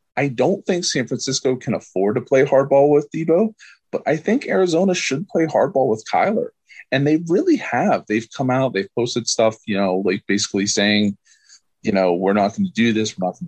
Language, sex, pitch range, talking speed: English, male, 105-140 Hz, 210 wpm